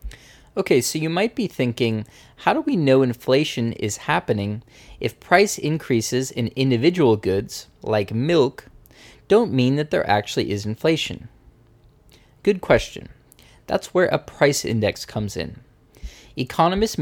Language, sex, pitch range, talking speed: English, male, 115-150 Hz, 135 wpm